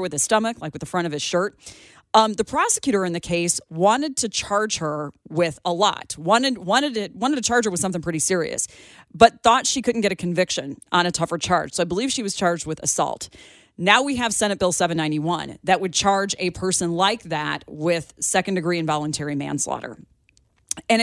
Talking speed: 205 wpm